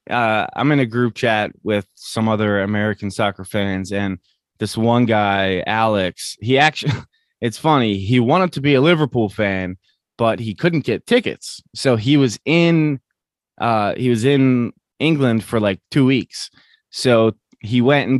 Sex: male